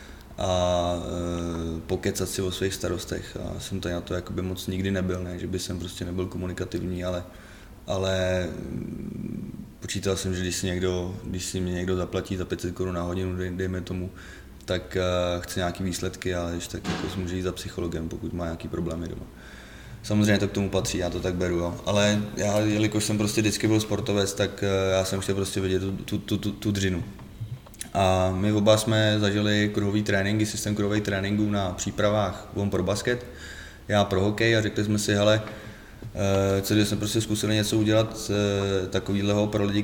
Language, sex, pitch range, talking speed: Czech, male, 90-105 Hz, 190 wpm